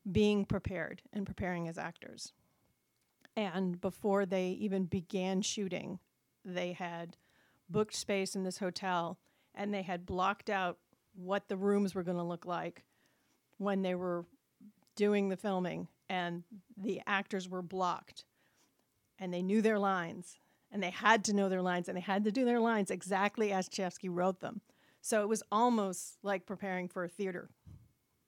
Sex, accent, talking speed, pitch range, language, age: female, American, 160 wpm, 180-210 Hz, English, 40-59